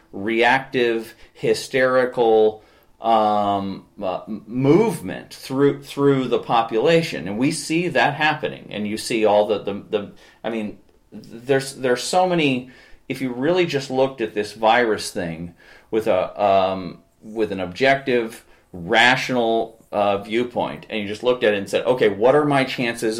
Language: English